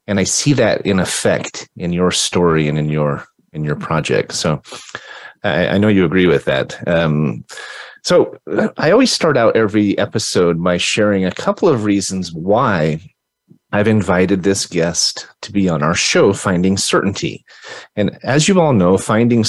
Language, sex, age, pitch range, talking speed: English, male, 30-49, 95-125 Hz, 170 wpm